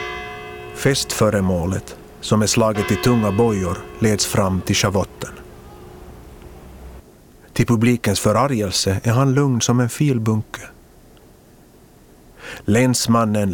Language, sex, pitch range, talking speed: Swedish, male, 95-120 Hz, 95 wpm